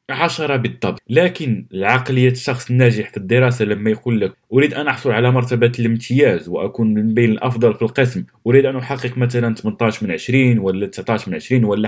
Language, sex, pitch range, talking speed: Arabic, male, 120-180 Hz, 175 wpm